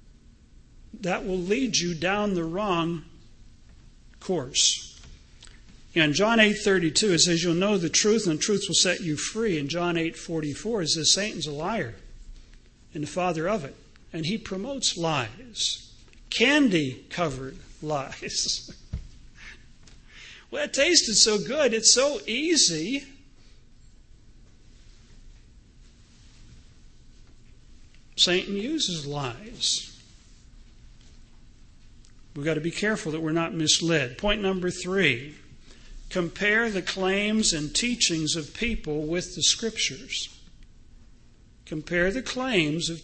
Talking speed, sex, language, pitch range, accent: 110 wpm, male, English, 155-210 Hz, American